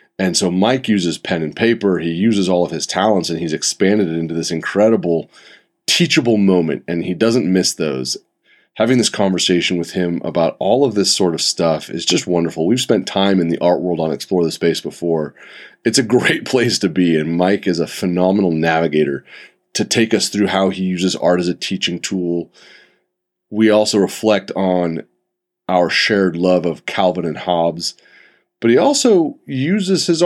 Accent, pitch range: American, 85-115 Hz